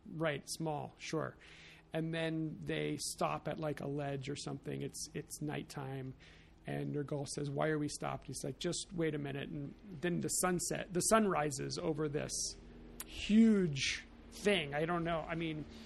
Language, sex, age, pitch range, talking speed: English, male, 40-59, 140-170 Hz, 170 wpm